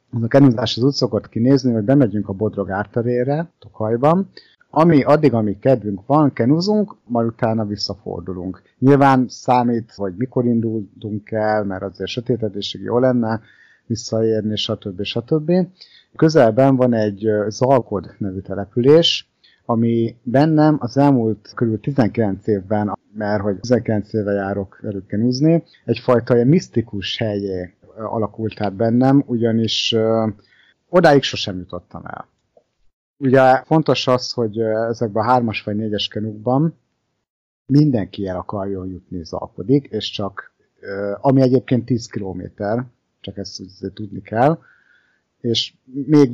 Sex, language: male, Hungarian